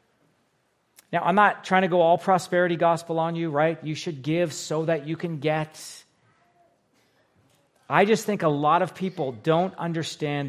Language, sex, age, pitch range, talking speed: English, male, 40-59, 150-185 Hz, 165 wpm